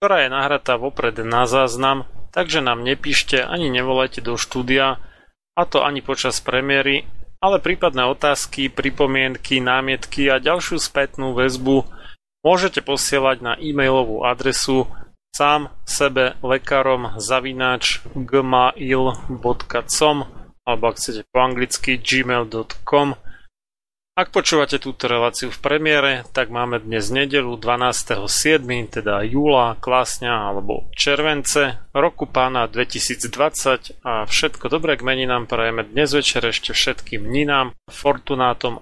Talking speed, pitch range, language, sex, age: 110 wpm, 120-140 Hz, Slovak, male, 30-49